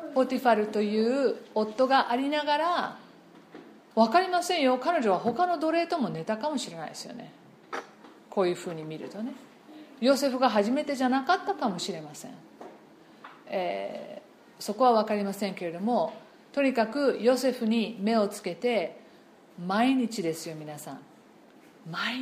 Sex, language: female, Japanese